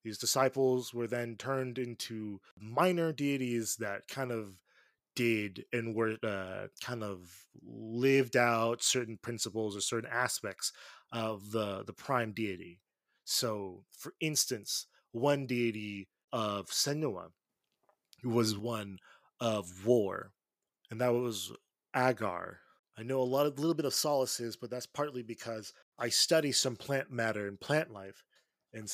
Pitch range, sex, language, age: 105-125 Hz, male, English, 20-39